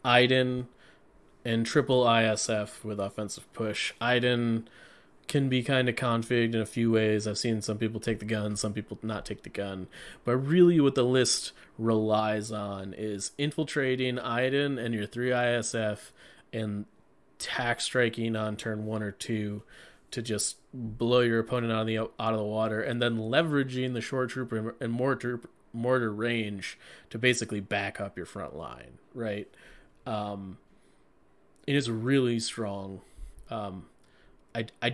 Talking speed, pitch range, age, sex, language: 155 wpm, 105-125 Hz, 20-39, male, English